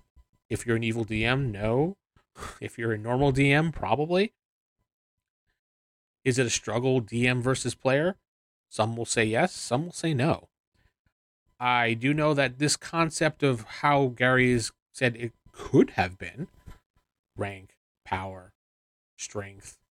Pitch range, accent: 110-150 Hz, American